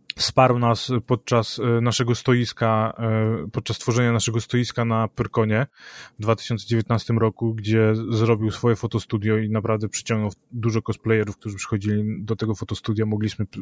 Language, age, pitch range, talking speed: Polish, 20-39, 110-120 Hz, 130 wpm